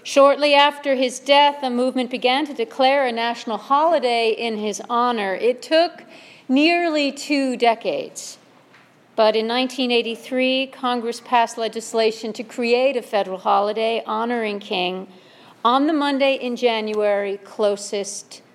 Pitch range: 215-265 Hz